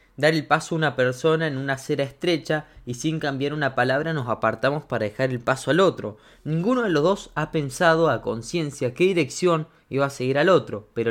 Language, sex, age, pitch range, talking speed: Spanish, male, 20-39, 125-160 Hz, 210 wpm